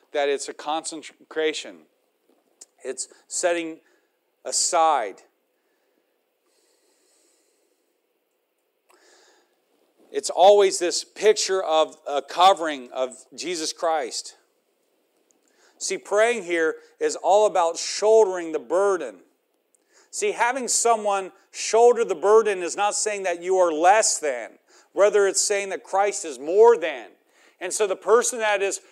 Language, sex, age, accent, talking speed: English, male, 40-59, American, 110 wpm